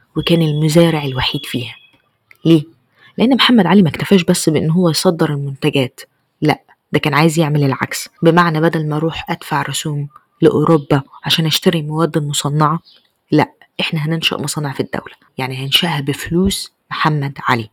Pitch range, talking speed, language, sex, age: 140-165 Hz, 145 wpm, Arabic, female, 20-39